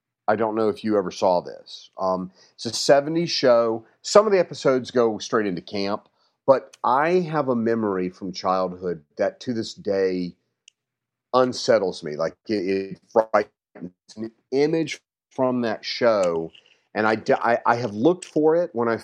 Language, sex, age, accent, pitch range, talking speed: English, male, 40-59, American, 105-140 Hz, 160 wpm